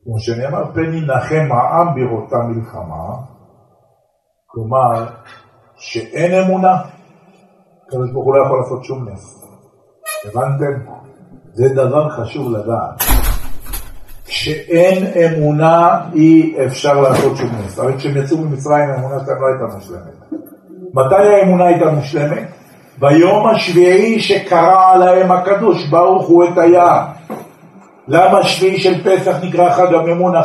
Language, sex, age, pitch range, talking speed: Hebrew, male, 50-69, 145-195 Hz, 110 wpm